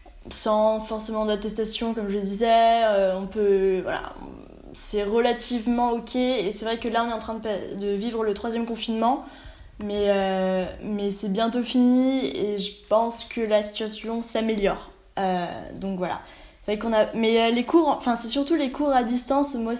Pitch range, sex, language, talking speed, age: 205-240 Hz, female, French, 180 wpm, 20-39